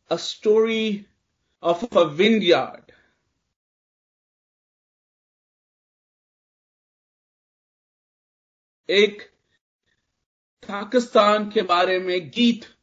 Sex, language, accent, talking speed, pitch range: male, Hindi, native, 50 wpm, 170-210 Hz